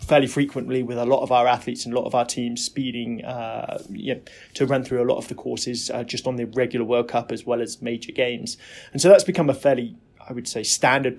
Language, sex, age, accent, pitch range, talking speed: English, male, 20-39, British, 120-140 Hz, 245 wpm